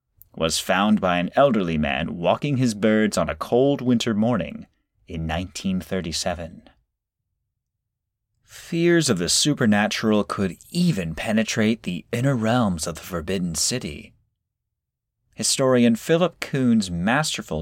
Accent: American